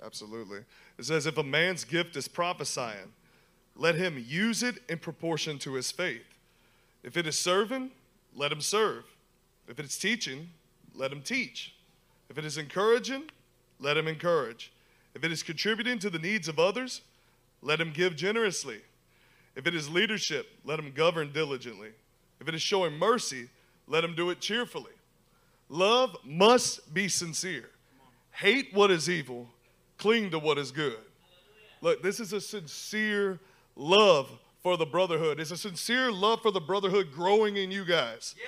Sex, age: male, 30-49